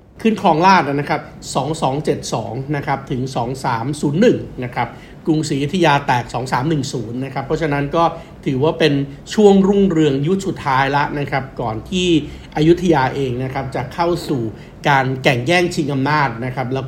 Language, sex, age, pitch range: Thai, male, 60-79, 135-170 Hz